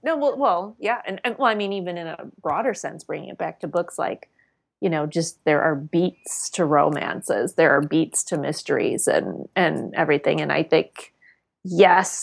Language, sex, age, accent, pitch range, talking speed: English, female, 30-49, American, 160-225 Hz, 195 wpm